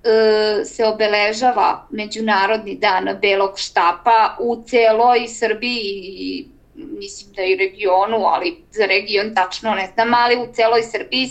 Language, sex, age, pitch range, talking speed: Croatian, female, 20-39, 215-270 Hz, 125 wpm